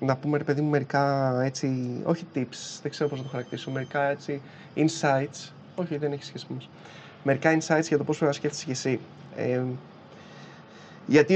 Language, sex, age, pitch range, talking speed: Greek, male, 20-39, 140-165 Hz, 185 wpm